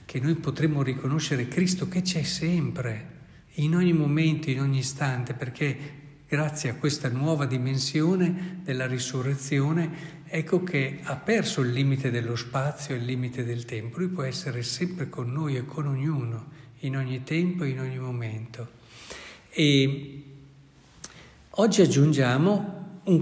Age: 60-79